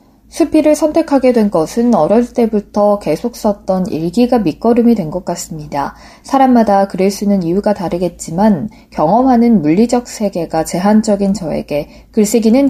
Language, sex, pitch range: Korean, female, 175-245 Hz